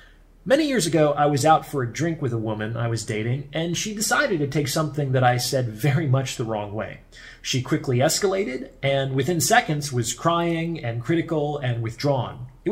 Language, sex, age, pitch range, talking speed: English, male, 30-49, 125-165 Hz, 200 wpm